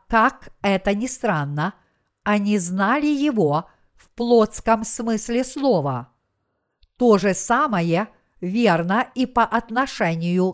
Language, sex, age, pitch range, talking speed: Russian, female, 50-69, 185-245 Hz, 100 wpm